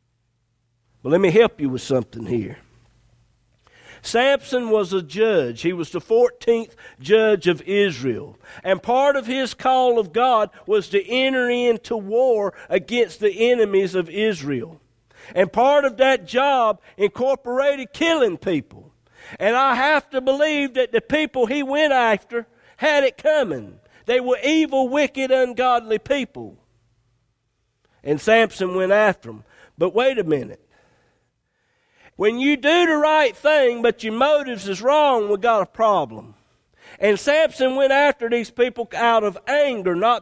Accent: American